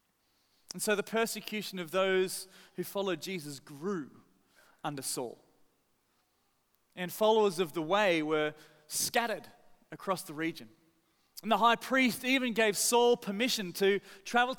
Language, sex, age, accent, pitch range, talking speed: English, male, 30-49, Australian, 160-220 Hz, 130 wpm